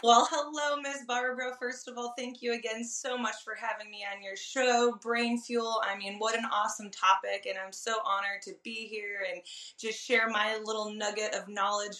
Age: 20-39